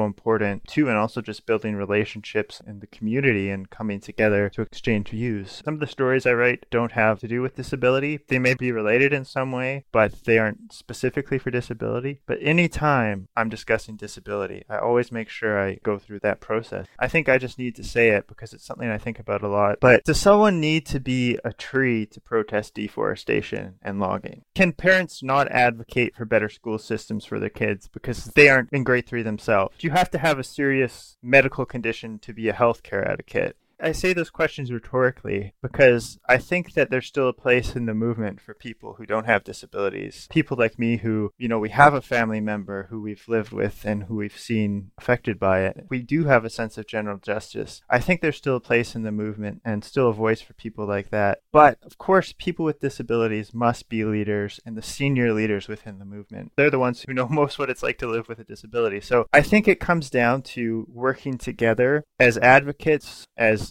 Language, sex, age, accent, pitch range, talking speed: English, male, 20-39, American, 110-135 Hz, 215 wpm